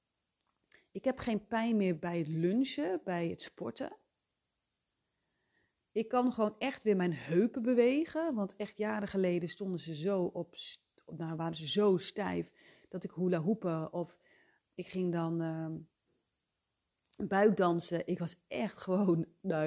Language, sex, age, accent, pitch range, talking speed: Dutch, female, 30-49, Dutch, 175-240 Hz, 145 wpm